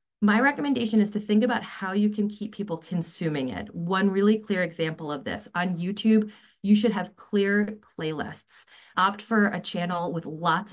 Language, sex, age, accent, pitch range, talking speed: English, female, 30-49, American, 160-205 Hz, 180 wpm